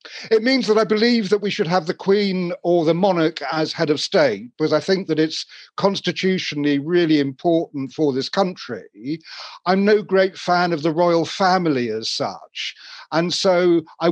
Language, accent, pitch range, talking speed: English, British, 145-180 Hz, 180 wpm